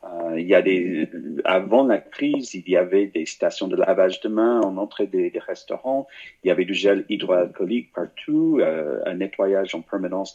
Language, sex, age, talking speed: French, male, 50-69, 205 wpm